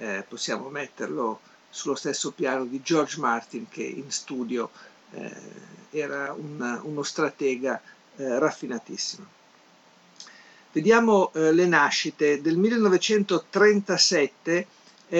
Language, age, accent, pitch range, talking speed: Italian, 50-69, native, 125-160 Hz, 100 wpm